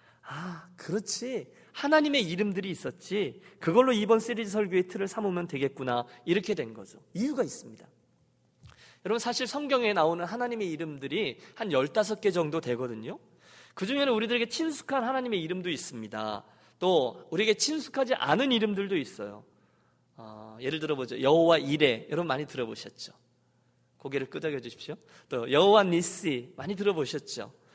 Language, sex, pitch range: Korean, male, 155-245 Hz